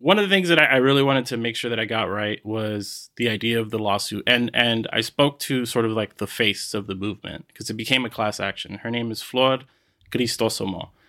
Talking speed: 245 wpm